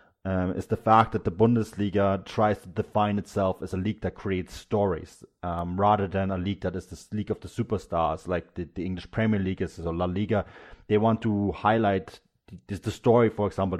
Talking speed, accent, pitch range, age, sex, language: 210 wpm, German, 95-110 Hz, 30-49, male, English